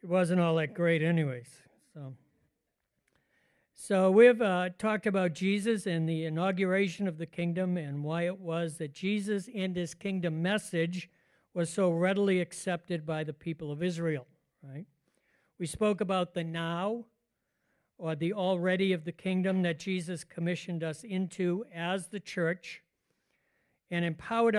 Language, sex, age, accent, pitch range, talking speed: English, male, 60-79, American, 165-190 Hz, 150 wpm